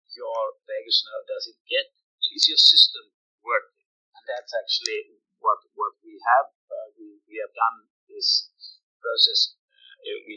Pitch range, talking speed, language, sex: 360-475 Hz, 140 wpm, English, male